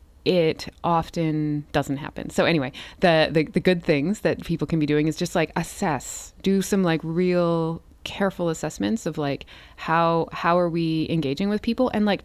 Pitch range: 140-175 Hz